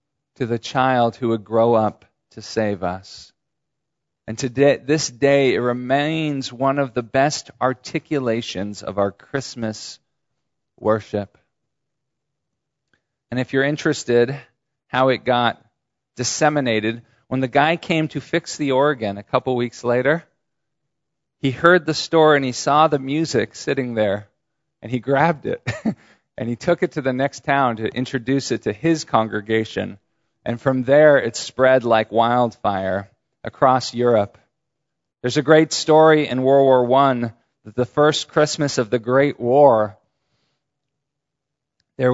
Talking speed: 140 wpm